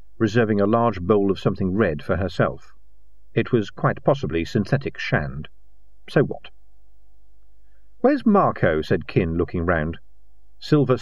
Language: English